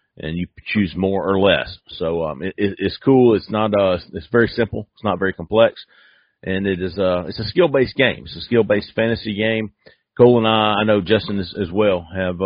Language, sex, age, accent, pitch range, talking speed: English, male, 40-59, American, 100-130 Hz, 225 wpm